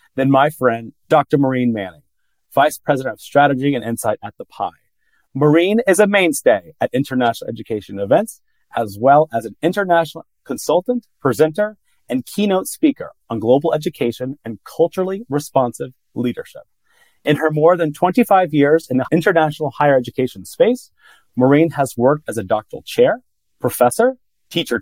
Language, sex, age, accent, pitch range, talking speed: English, male, 30-49, American, 130-185 Hz, 145 wpm